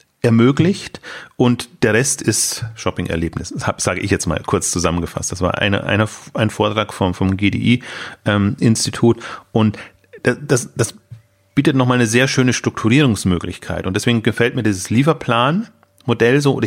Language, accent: German, German